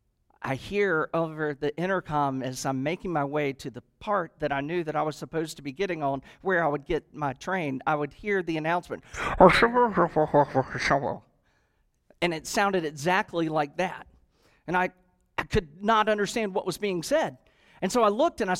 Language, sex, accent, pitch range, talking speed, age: English, male, American, 165-275 Hz, 185 wpm, 40-59